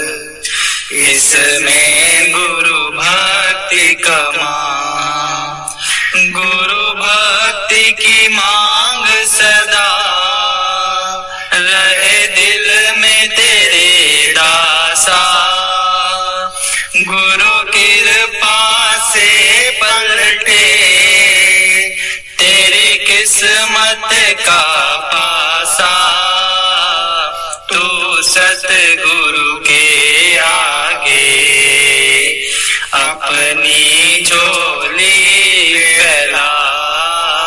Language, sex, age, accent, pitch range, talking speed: Hindi, male, 30-49, native, 160-210 Hz, 50 wpm